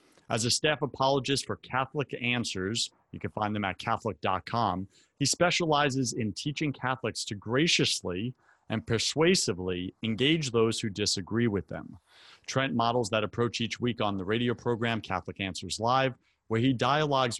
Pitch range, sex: 100-130 Hz, male